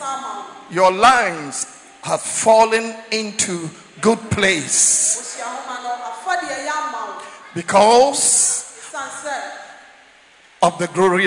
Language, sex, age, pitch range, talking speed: English, male, 50-69, 210-300 Hz, 60 wpm